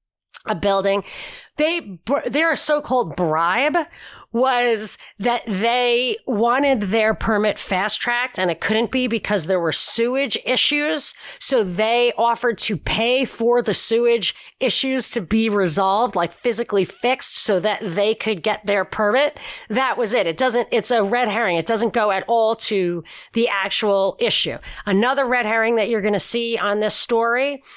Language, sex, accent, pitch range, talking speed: English, female, American, 195-240 Hz, 160 wpm